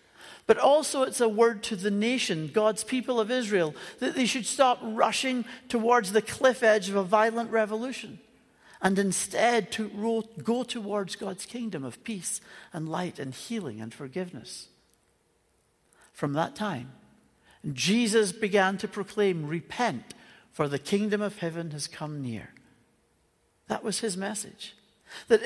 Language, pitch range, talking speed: English, 195-240 Hz, 145 wpm